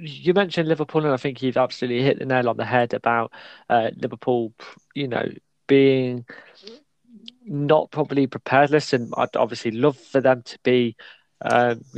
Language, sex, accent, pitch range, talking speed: English, male, British, 120-145 Hz, 160 wpm